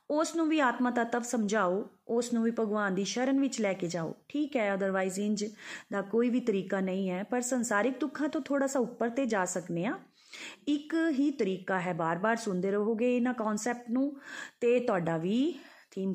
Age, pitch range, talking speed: 30-49, 185-245 Hz, 185 wpm